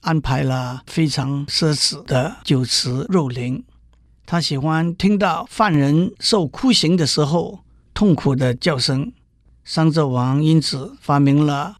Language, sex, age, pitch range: Chinese, male, 50-69, 135-180 Hz